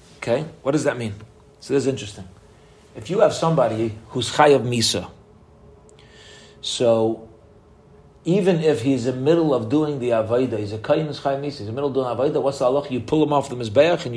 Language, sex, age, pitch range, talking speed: English, male, 40-59, 115-155 Hz, 215 wpm